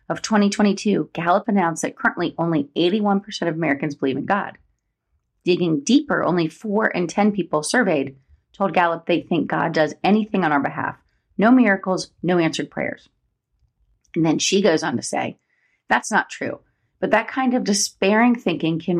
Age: 30-49